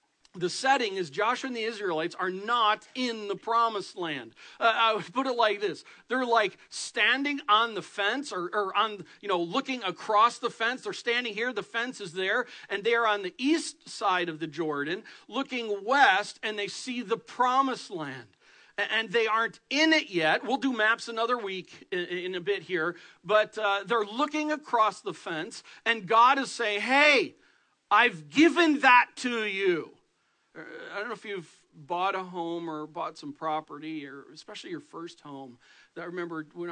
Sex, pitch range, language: male, 170-245 Hz, English